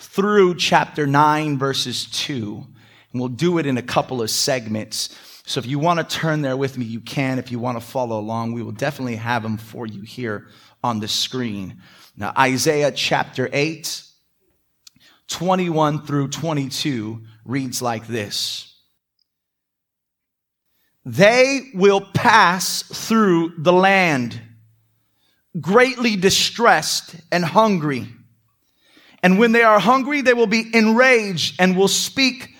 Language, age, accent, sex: English, 30-49, American, male